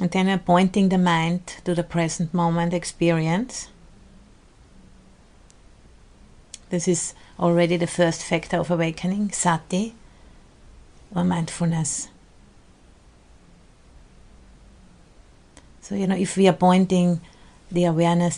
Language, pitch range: English, 165-185 Hz